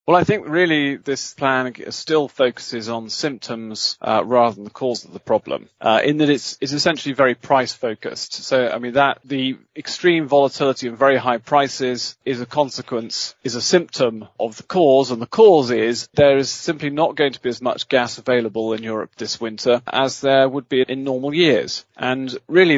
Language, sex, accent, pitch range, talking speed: English, male, British, 120-145 Hz, 200 wpm